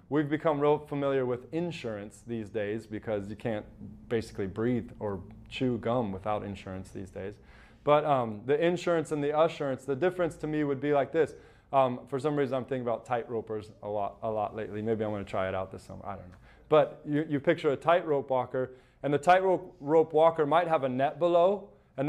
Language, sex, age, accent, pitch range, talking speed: English, male, 20-39, American, 120-155 Hz, 210 wpm